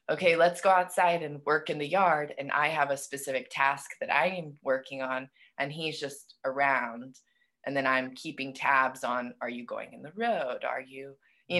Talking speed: 200 wpm